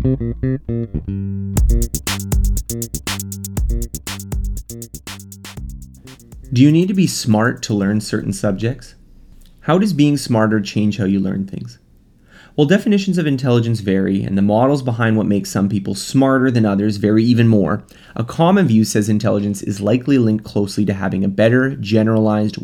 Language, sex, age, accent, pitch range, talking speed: English, male, 30-49, American, 100-130 Hz, 140 wpm